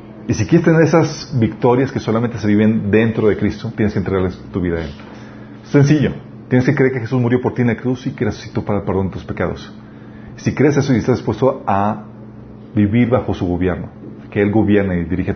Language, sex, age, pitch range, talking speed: Spanish, male, 40-59, 100-115 Hz, 225 wpm